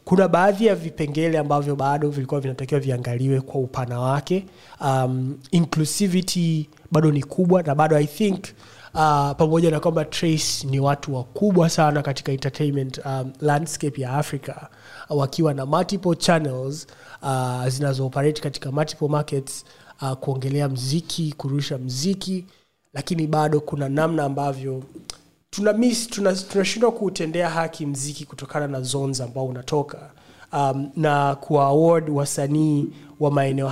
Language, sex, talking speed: Swahili, male, 135 wpm